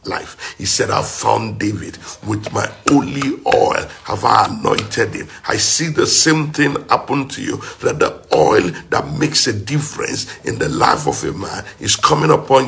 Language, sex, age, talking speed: English, male, 50-69, 180 wpm